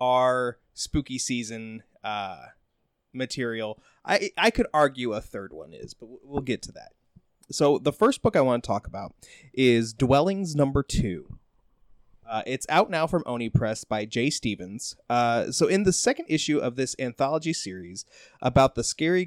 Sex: male